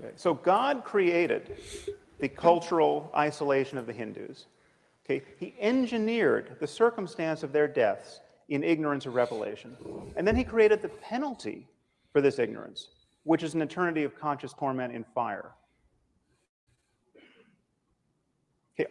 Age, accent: 40-59, American